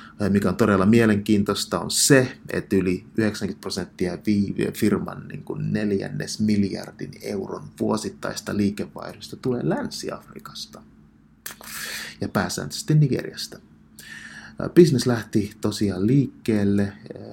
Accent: native